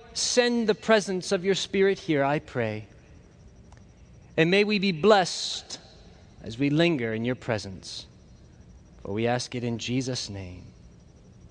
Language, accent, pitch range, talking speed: English, American, 165-240 Hz, 140 wpm